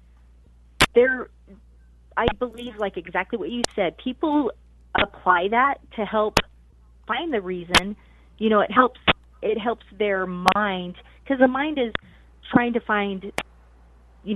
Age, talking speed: 30-49, 135 wpm